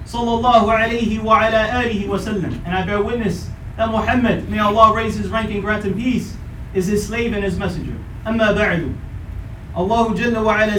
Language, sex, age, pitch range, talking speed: English, male, 30-49, 215-255 Hz, 120 wpm